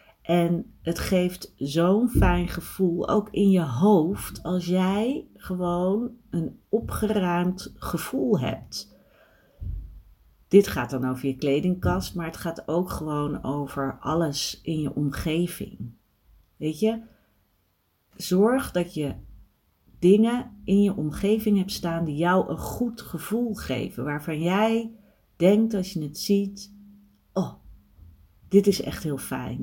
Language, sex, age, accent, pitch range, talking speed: Dutch, female, 40-59, Dutch, 145-205 Hz, 125 wpm